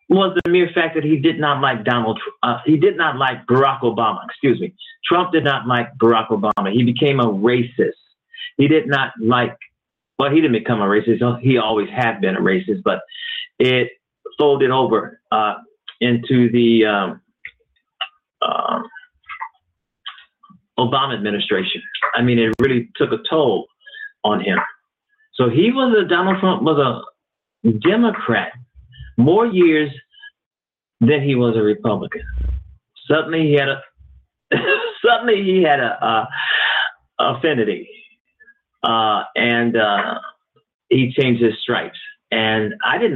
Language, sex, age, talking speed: English, male, 50-69, 140 wpm